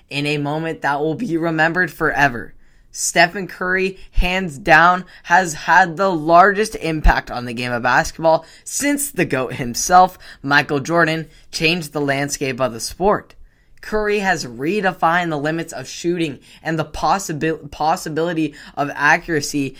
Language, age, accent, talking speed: English, 10-29, American, 140 wpm